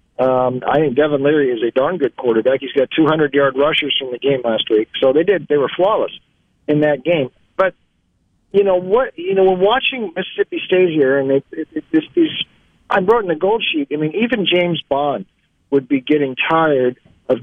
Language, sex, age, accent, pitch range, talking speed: English, male, 50-69, American, 125-170 Hz, 205 wpm